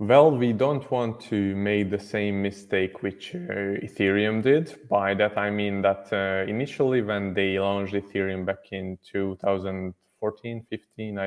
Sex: male